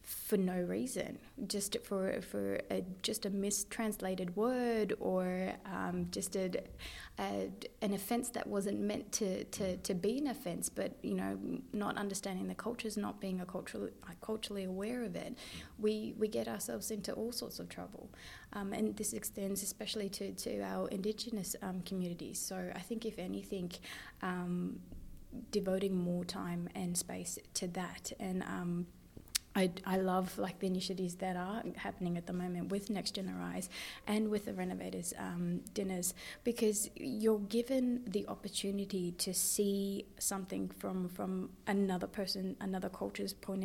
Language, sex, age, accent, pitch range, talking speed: English, female, 20-39, Australian, 185-215 Hz, 155 wpm